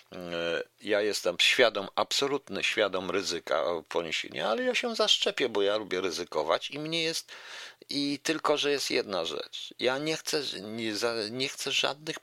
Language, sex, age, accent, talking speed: Polish, male, 50-69, native, 150 wpm